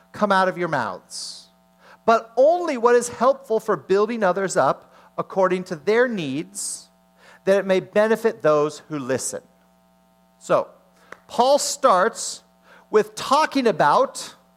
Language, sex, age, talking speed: English, male, 40-59, 130 wpm